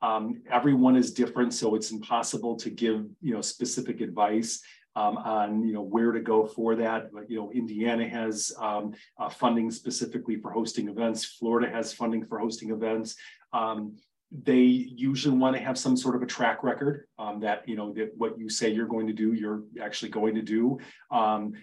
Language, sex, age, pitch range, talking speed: English, male, 30-49, 110-120 Hz, 195 wpm